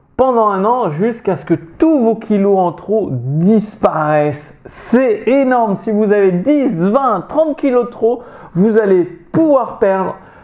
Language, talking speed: French, 155 wpm